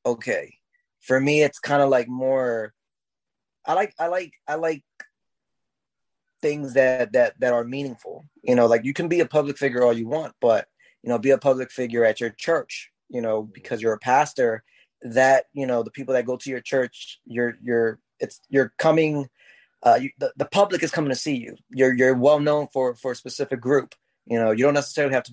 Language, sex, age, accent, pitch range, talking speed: English, male, 20-39, American, 120-145 Hz, 210 wpm